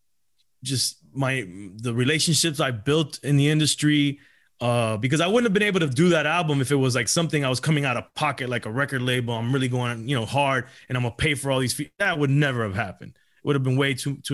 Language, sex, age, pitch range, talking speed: English, male, 20-39, 125-155 Hz, 250 wpm